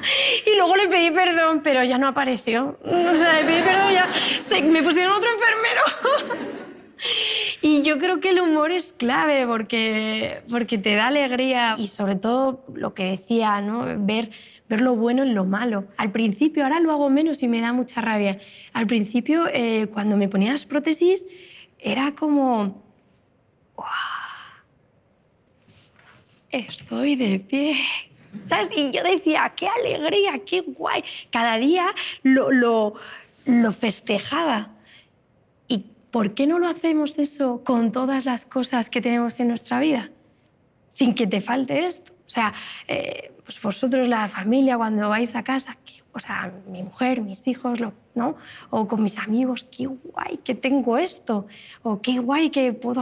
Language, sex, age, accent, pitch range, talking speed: Spanish, female, 20-39, Spanish, 225-295 Hz, 170 wpm